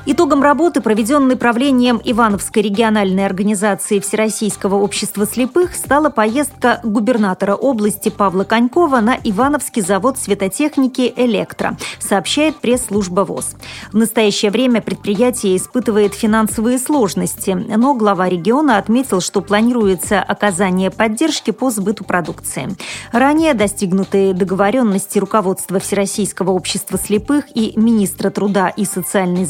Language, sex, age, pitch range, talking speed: Russian, female, 30-49, 200-250 Hz, 110 wpm